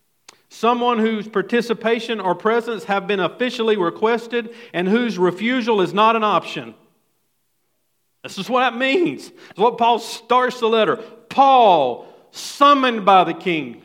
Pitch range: 200-245 Hz